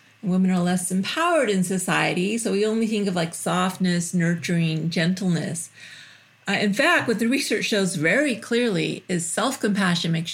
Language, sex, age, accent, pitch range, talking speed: English, female, 40-59, American, 185-225 Hz, 155 wpm